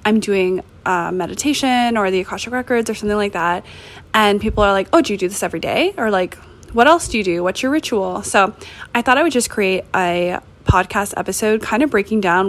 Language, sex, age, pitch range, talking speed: English, female, 20-39, 190-235 Hz, 225 wpm